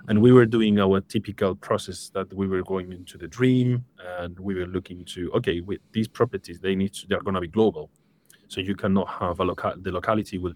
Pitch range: 90-105 Hz